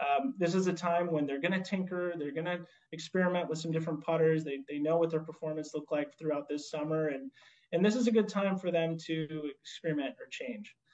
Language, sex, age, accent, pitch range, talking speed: English, male, 30-49, American, 150-190 Hz, 230 wpm